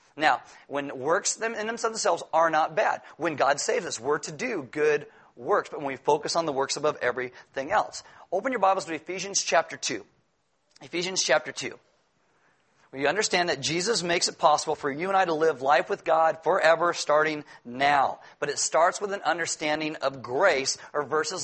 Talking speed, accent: 190 wpm, American